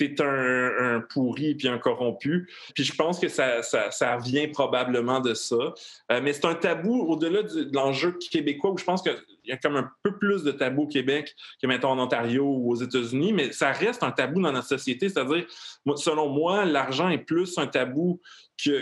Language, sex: French, male